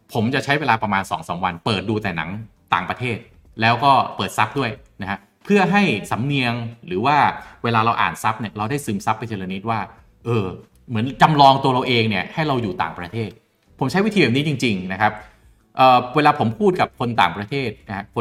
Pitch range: 105-135 Hz